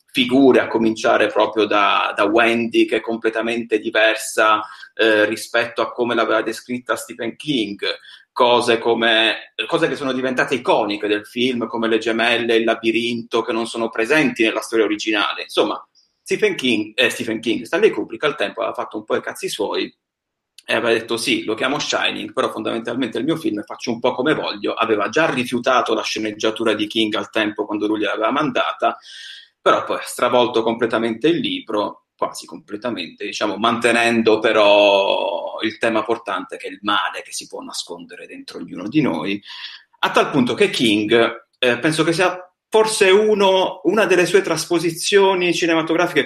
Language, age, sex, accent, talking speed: Italian, 30-49, male, native, 170 wpm